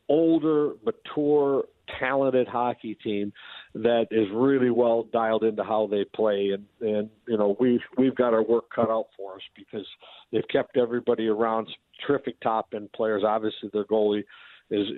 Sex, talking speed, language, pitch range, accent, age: male, 160 wpm, English, 105-120 Hz, American, 50-69